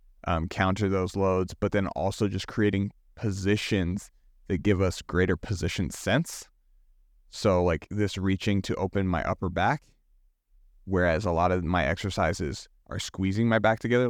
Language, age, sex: English, 30-49, male